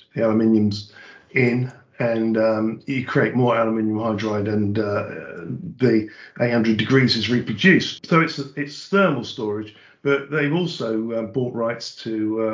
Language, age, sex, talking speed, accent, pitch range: English, 50-69, male, 145 wpm, British, 110-135 Hz